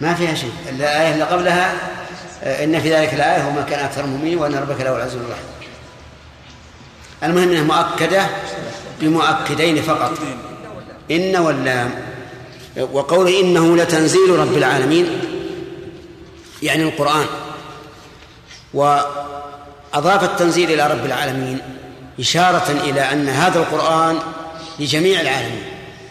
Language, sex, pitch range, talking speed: Arabic, male, 145-165 Hz, 105 wpm